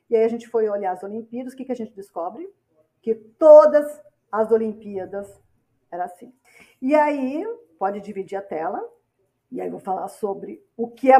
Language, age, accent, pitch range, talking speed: Portuguese, 50-69, Brazilian, 210-275 Hz, 190 wpm